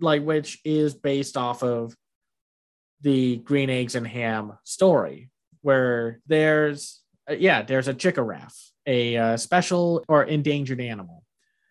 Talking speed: 135 wpm